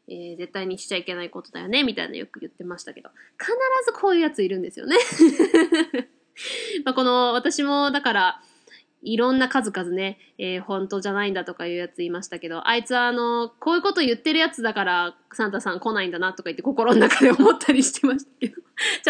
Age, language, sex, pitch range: 20-39, Japanese, female, 205-285 Hz